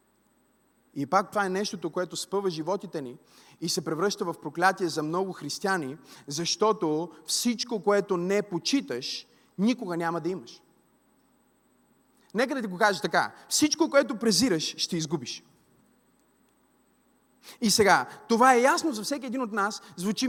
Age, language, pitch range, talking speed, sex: 30-49, Bulgarian, 200-295 Hz, 140 wpm, male